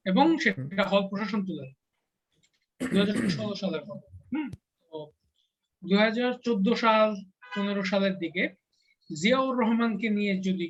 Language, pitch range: Bengali, 170-225 Hz